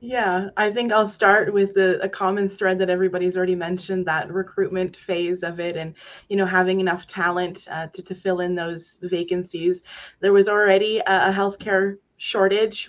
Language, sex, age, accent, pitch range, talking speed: English, female, 20-39, American, 180-205 Hz, 175 wpm